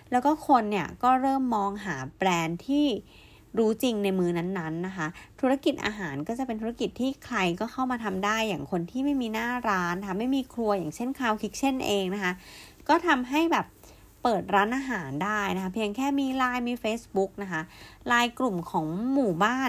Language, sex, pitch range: Thai, female, 175-255 Hz